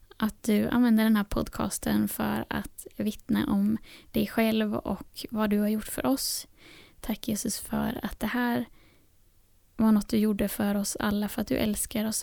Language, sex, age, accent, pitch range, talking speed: Swedish, female, 10-29, native, 205-230 Hz, 180 wpm